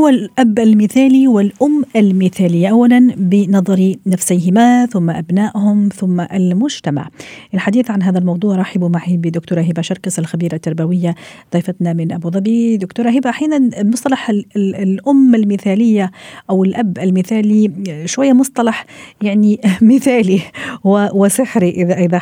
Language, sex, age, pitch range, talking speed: Arabic, female, 40-59, 180-230 Hz, 110 wpm